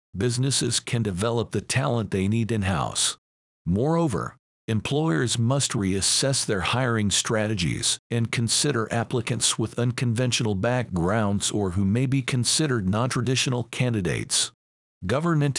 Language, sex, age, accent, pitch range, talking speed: English, male, 50-69, American, 105-130 Hz, 110 wpm